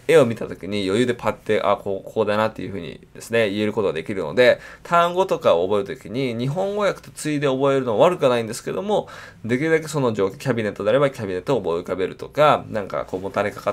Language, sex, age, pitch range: Japanese, male, 20-39, 105-170 Hz